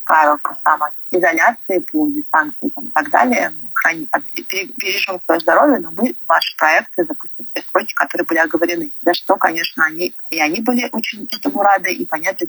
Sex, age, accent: female, 30-49, native